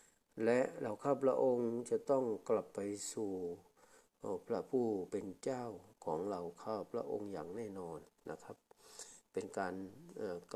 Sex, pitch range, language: male, 105-130 Hz, Thai